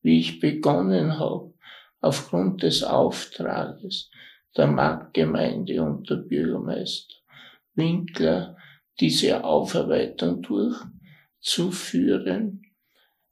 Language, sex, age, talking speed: German, male, 60-79, 70 wpm